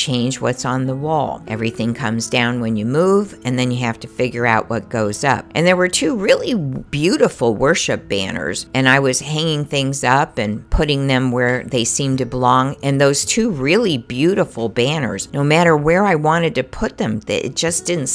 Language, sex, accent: English, female, American